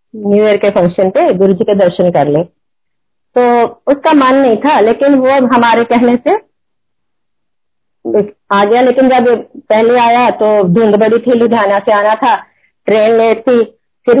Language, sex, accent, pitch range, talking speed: Hindi, female, native, 210-260 Hz, 155 wpm